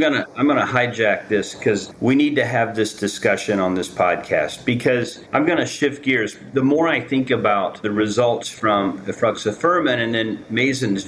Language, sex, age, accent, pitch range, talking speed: English, male, 40-59, American, 100-125 Hz, 185 wpm